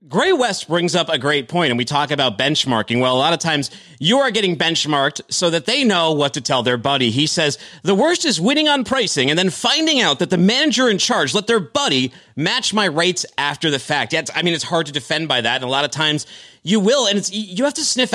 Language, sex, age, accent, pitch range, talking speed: English, male, 30-49, American, 150-215 Hz, 260 wpm